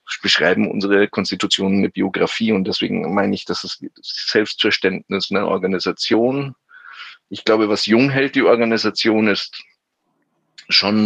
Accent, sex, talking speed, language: German, male, 125 wpm, German